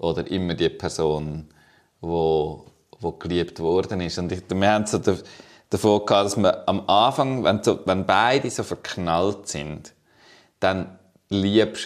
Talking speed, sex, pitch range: 130 wpm, male, 85-105 Hz